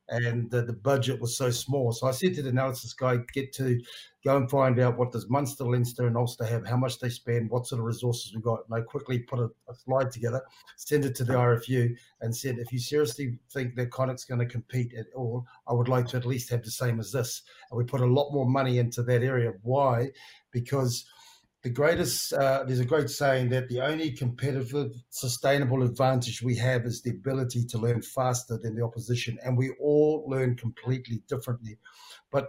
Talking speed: 220 wpm